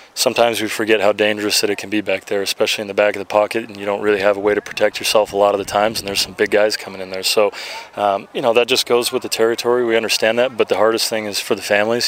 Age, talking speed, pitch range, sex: 20-39, 310 wpm, 100-110 Hz, male